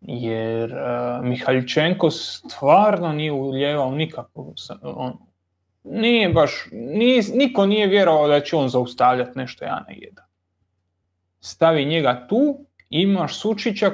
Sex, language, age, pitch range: male, Croatian, 30-49, 120-195 Hz